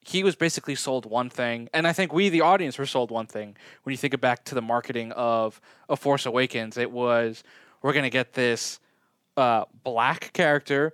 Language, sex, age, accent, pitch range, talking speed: English, male, 20-39, American, 115-145 Hz, 210 wpm